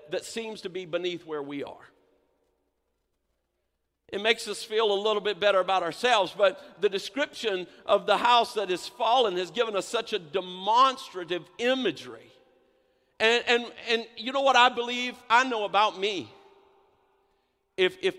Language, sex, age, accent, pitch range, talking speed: English, male, 50-69, American, 210-260 Hz, 160 wpm